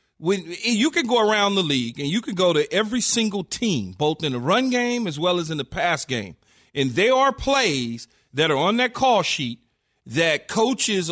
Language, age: English, 40-59